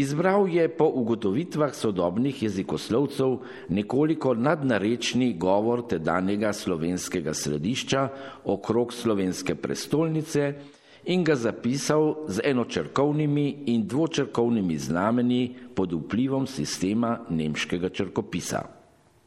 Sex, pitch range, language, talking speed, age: male, 95-140 Hz, Italian, 85 wpm, 50-69